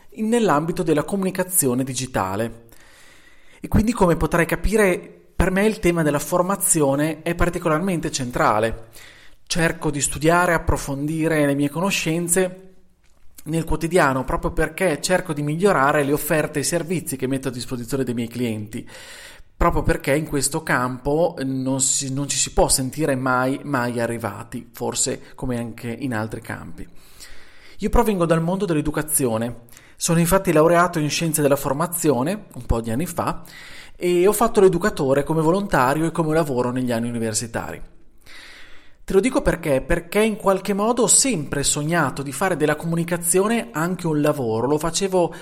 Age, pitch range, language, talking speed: 30-49, 135-185 Hz, Italian, 150 wpm